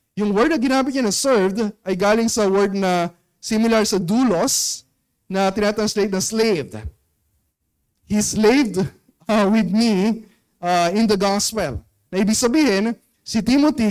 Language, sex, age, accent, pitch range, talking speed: Filipino, male, 20-39, native, 170-220 Hz, 140 wpm